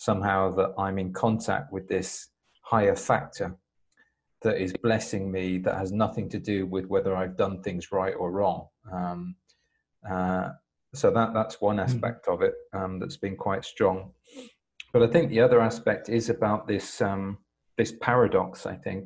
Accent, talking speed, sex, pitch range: British, 170 wpm, male, 95-110 Hz